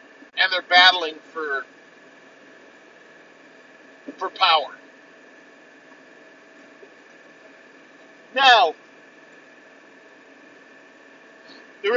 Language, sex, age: English, male, 50-69